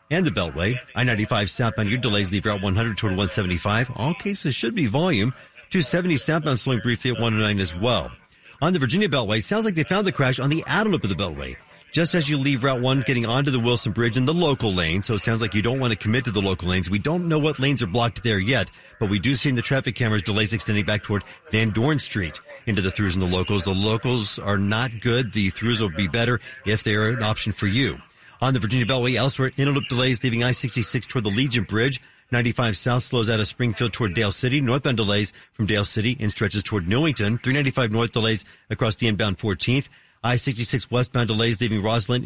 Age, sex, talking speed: 50-69, male, 225 wpm